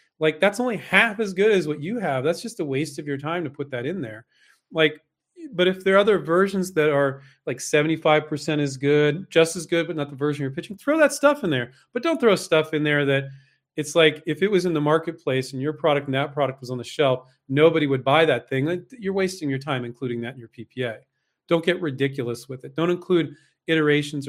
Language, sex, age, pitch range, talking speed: English, male, 40-59, 135-180 Hz, 235 wpm